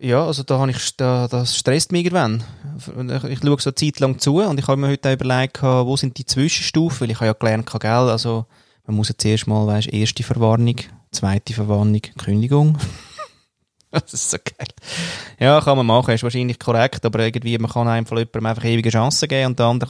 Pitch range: 110-140 Hz